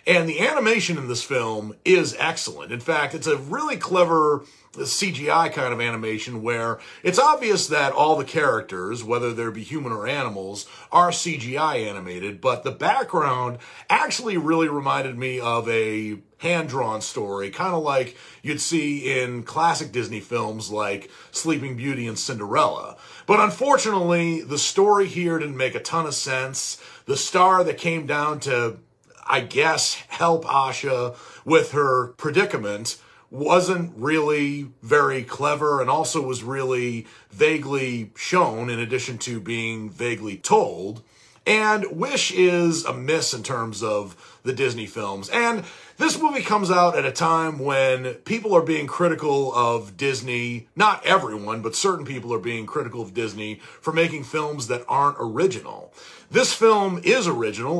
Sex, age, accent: male, 40-59, American